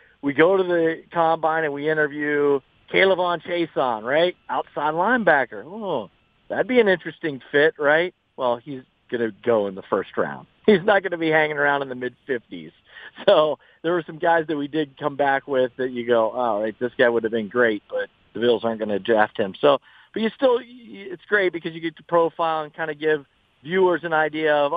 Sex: male